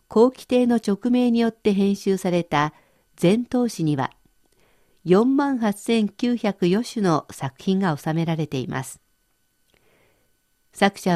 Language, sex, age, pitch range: Japanese, female, 50-69, 165-225 Hz